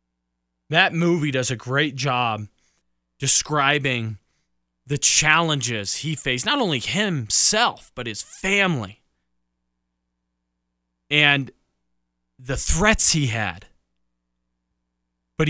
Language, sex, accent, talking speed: English, male, American, 90 wpm